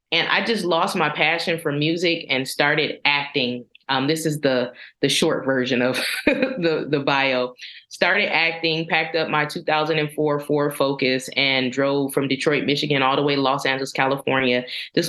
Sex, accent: female, American